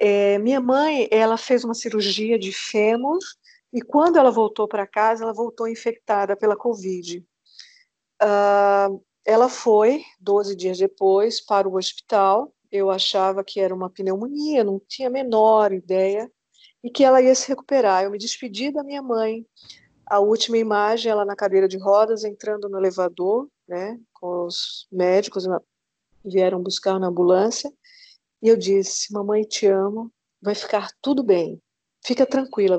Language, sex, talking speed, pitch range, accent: Portuguese, female, 150 wpm, 195-240 Hz, Brazilian